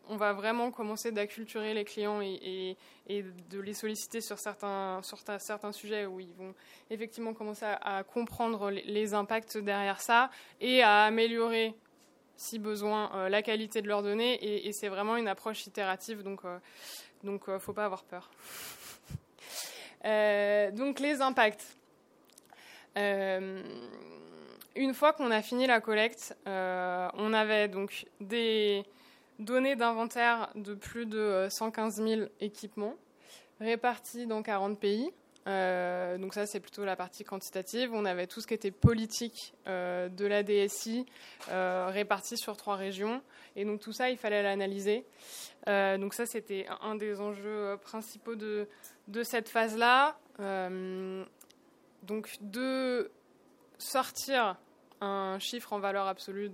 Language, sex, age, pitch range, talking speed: French, female, 20-39, 200-230 Hz, 150 wpm